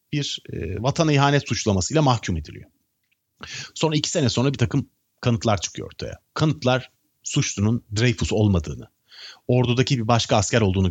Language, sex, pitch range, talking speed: Turkish, male, 95-140 Hz, 140 wpm